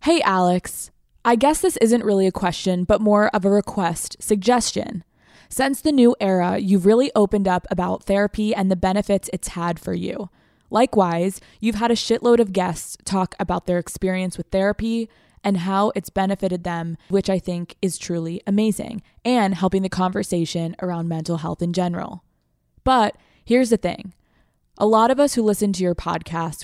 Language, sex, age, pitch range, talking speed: English, female, 20-39, 170-210 Hz, 175 wpm